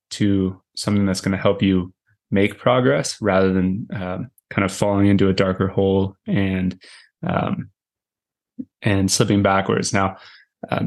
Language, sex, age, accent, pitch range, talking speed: English, male, 20-39, American, 95-105 Hz, 145 wpm